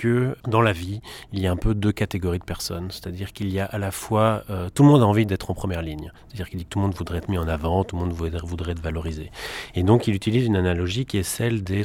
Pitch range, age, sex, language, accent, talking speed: 90-110 Hz, 30-49, male, French, French, 300 wpm